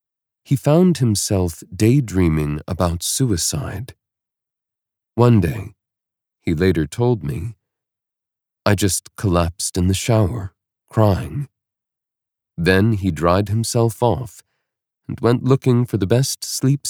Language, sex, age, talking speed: English, male, 40-59, 110 wpm